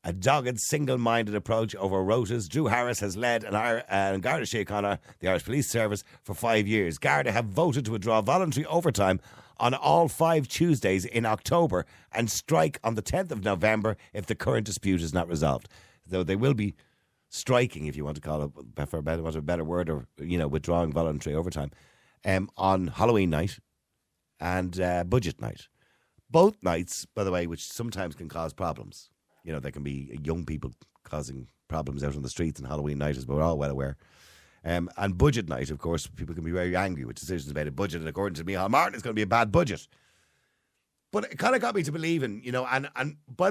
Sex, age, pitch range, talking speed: male, 50-69, 80-115 Hz, 205 wpm